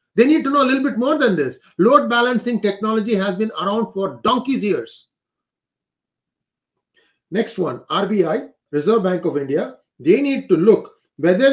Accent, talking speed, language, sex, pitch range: Indian, 160 wpm, English, male, 170-215 Hz